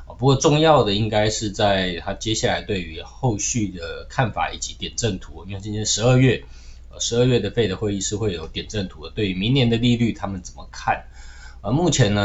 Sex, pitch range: male, 95-125 Hz